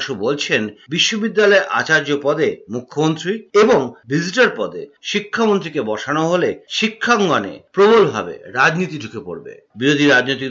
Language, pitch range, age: Bengali, 125-200 Hz, 50-69